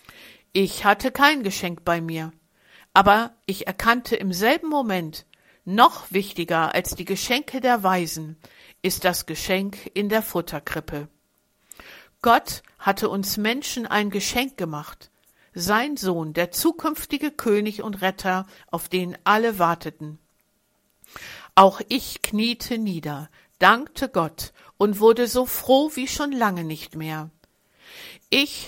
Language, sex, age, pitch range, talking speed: German, female, 60-79, 175-225 Hz, 125 wpm